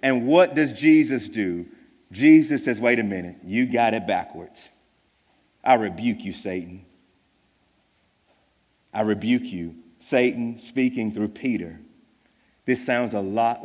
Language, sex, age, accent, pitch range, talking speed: English, male, 40-59, American, 105-145 Hz, 130 wpm